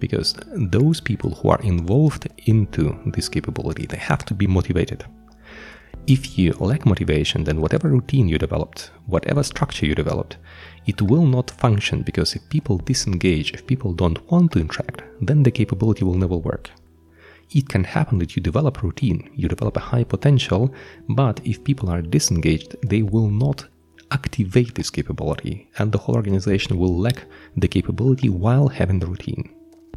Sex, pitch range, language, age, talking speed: male, 85-130 Hz, English, 30-49, 165 wpm